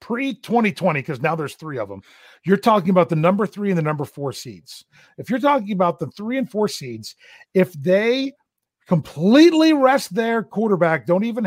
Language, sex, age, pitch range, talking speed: English, male, 40-59, 150-215 Hz, 185 wpm